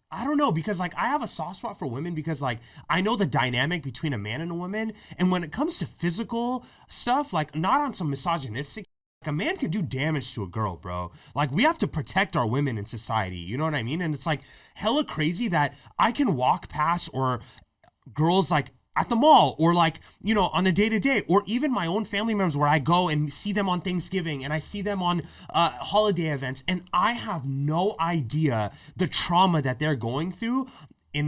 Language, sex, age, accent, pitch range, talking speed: English, male, 30-49, American, 150-205 Hz, 225 wpm